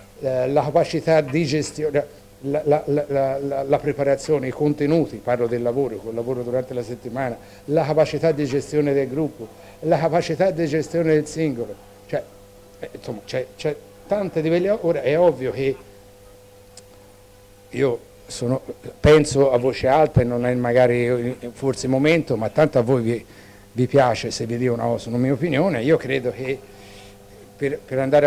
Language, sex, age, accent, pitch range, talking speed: Italian, male, 60-79, native, 115-145 Hz, 155 wpm